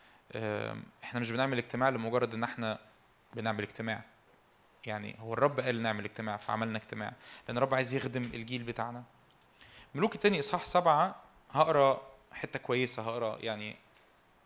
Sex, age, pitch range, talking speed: male, 20-39, 115-150 Hz, 135 wpm